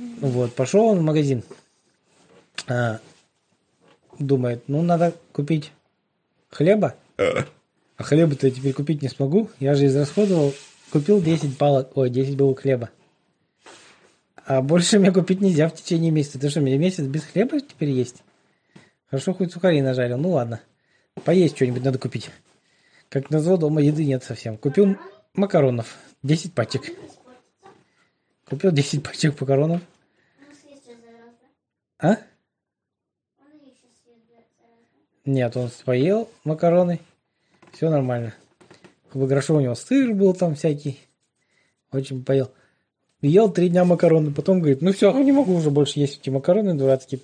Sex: male